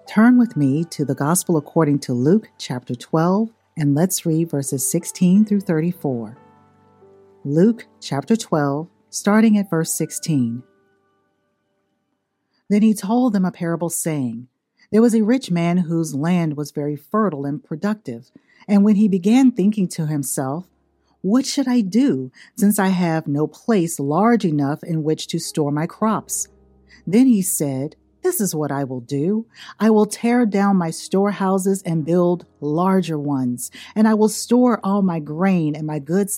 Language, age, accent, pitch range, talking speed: English, 50-69, American, 145-205 Hz, 160 wpm